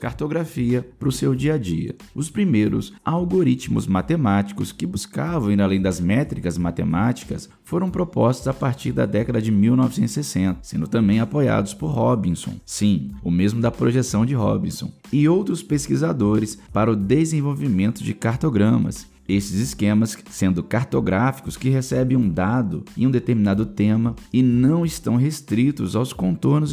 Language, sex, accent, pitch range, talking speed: Portuguese, male, Brazilian, 100-130 Hz, 145 wpm